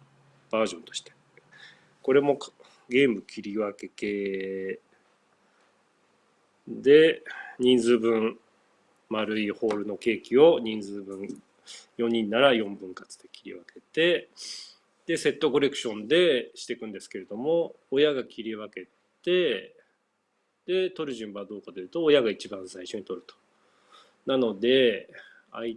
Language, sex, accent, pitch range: Japanese, male, native, 105-145 Hz